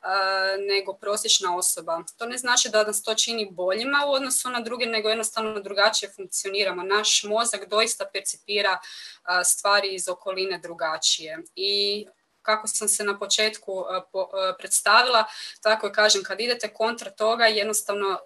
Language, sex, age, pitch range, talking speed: Croatian, female, 20-39, 185-220 Hz, 140 wpm